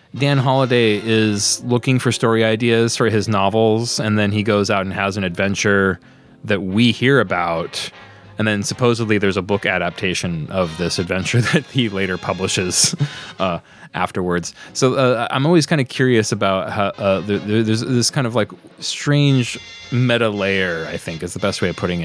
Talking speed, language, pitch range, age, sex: 180 wpm, English, 95-140 Hz, 20-39, male